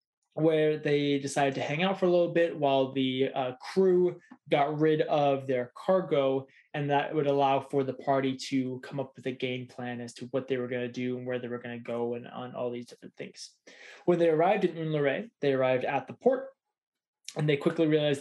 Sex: male